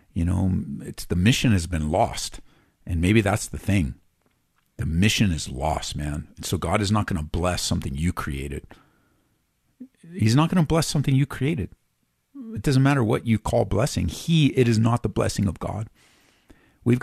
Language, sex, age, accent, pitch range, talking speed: English, male, 50-69, American, 90-125 Hz, 185 wpm